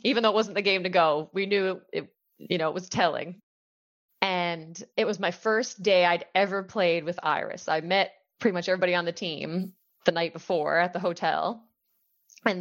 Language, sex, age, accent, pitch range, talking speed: English, female, 20-39, American, 165-190 Hz, 205 wpm